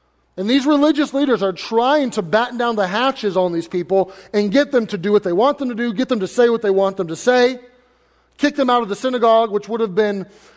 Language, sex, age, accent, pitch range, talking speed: English, male, 30-49, American, 195-250 Hz, 255 wpm